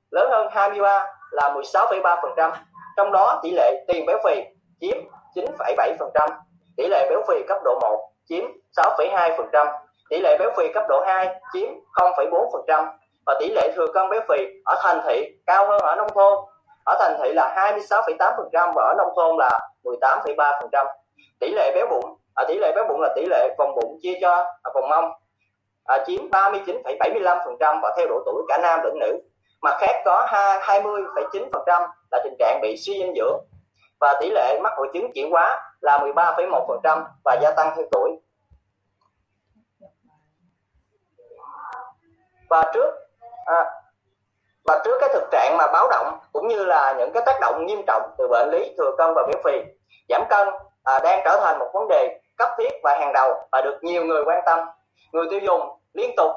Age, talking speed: 20-39, 175 wpm